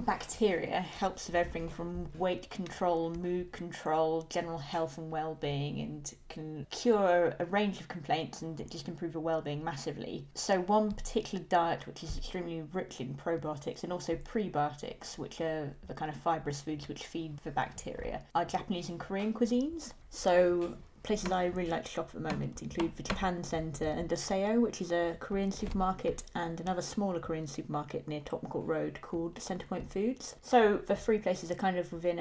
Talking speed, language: 175 wpm, English